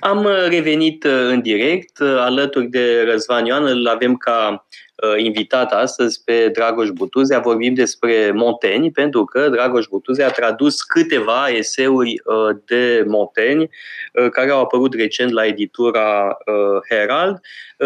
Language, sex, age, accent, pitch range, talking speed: Romanian, male, 20-39, native, 120-160 Hz, 120 wpm